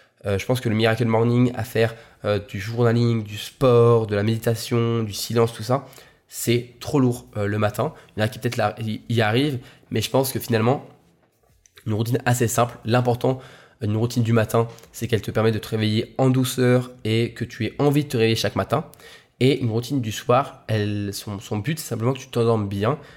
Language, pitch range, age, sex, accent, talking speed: French, 110-125 Hz, 20-39, male, French, 220 wpm